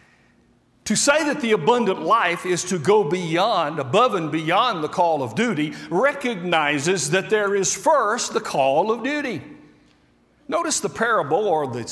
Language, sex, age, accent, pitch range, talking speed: English, male, 60-79, American, 150-220 Hz, 155 wpm